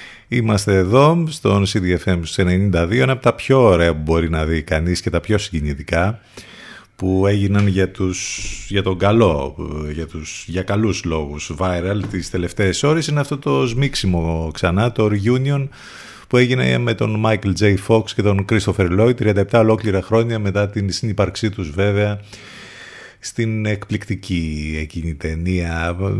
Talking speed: 150 wpm